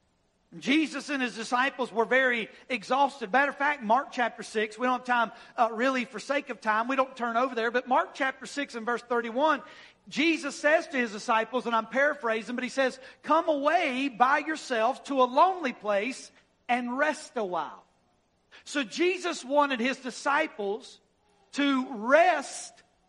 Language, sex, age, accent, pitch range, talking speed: English, male, 50-69, American, 230-285 Hz, 170 wpm